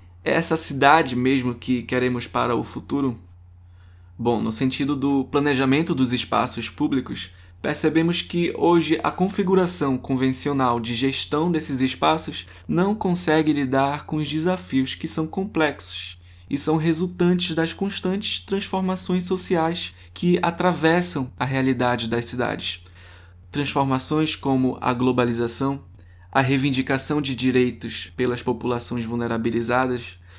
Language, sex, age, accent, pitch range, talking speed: Portuguese, male, 20-39, Brazilian, 120-165 Hz, 115 wpm